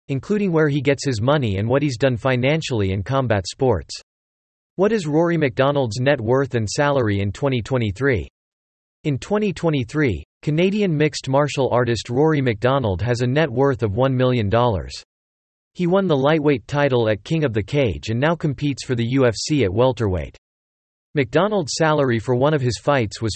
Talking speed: 165 wpm